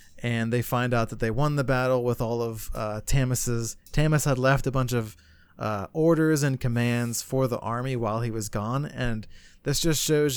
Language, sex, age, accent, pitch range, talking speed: English, male, 20-39, American, 115-135 Hz, 205 wpm